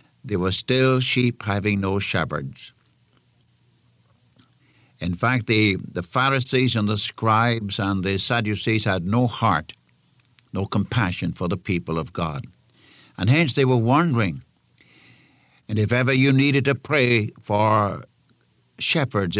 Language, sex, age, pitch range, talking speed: English, male, 60-79, 90-120 Hz, 130 wpm